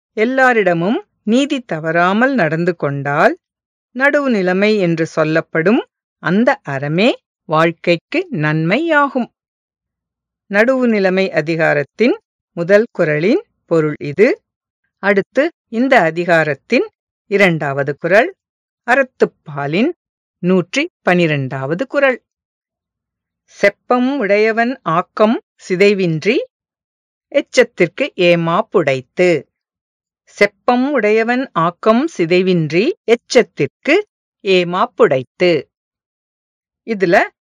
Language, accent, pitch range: English, Indian, 170-260 Hz